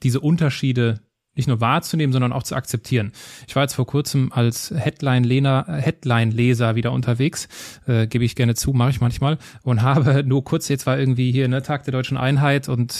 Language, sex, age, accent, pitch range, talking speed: German, male, 20-39, German, 125-150 Hz, 190 wpm